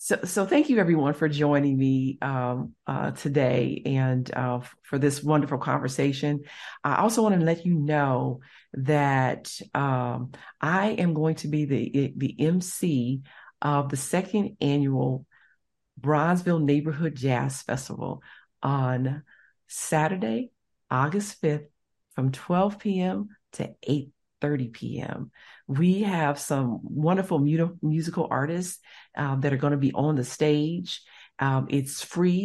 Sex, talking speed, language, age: female, 130 wpm, English, 50-69